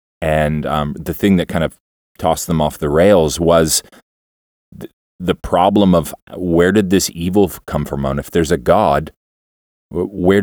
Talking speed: 165 wpm